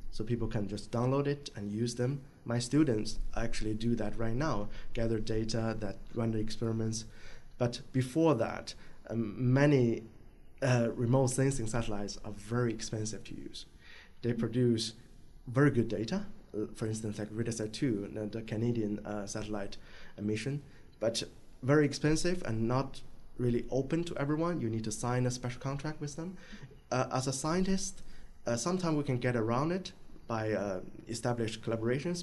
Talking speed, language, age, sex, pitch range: 155 wpm, English, 20-39, male, 110-135 Hz